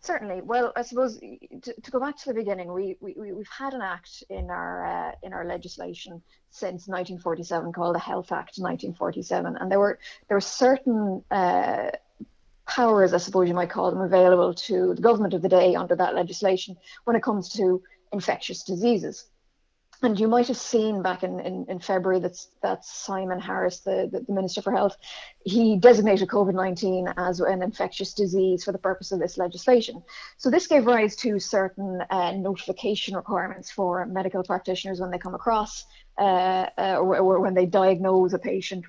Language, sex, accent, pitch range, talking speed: English, female, Irish, 185-220 Hz, 180 wpm